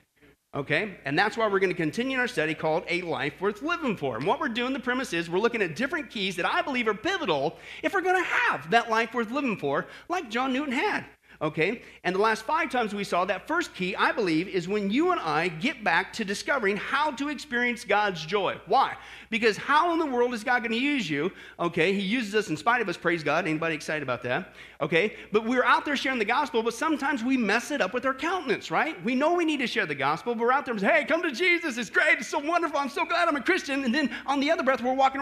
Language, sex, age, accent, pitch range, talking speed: English, male, 40-59, American, 200-295 Hz, 265 wpm